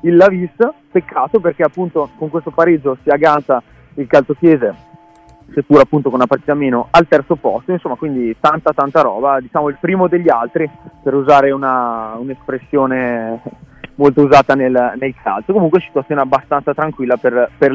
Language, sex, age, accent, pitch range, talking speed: Italian, male, 20-39, native, 130-165 Hz, 160 wpm